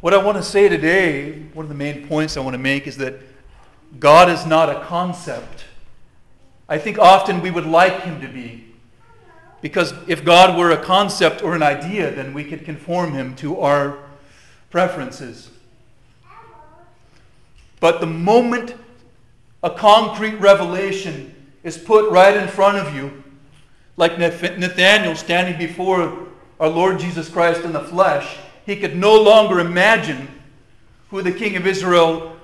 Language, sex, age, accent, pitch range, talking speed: English, male, 40-59, American, 145-185 Hz, 150 wpm